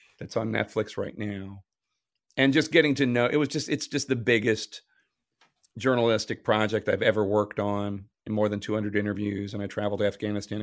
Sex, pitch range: male, 105-120 Hz